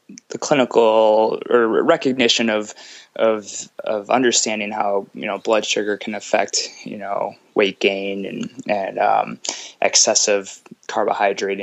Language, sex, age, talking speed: English, male, 20-39, 125 wpm